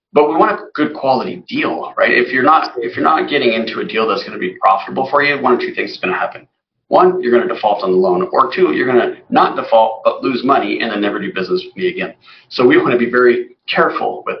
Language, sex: English, male